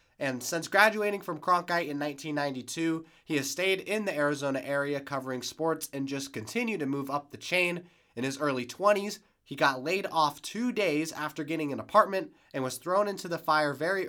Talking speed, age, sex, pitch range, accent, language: 190 wpm, 20-39, male, 130-170 Hz, American, English